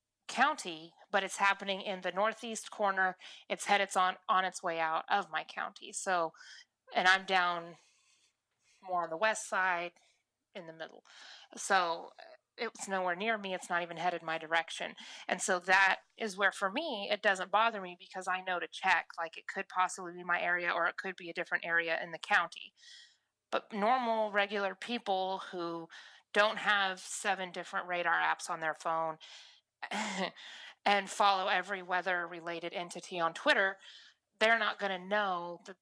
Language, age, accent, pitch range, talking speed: English, 30-49, American, 170-200 Hz, 170 wpm